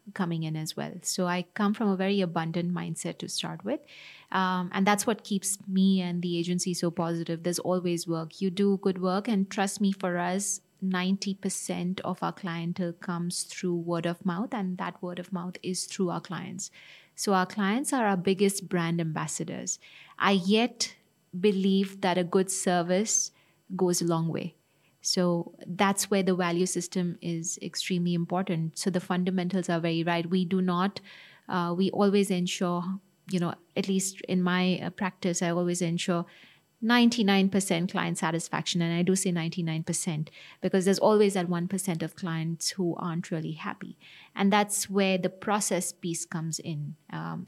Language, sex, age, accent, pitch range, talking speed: English, female, 30-49, Indian, 170-195 Hz, 170 wpm